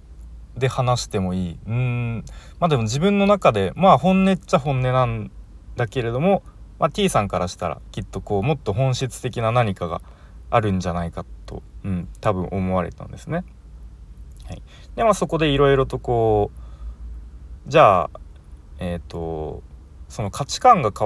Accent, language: native, Japanese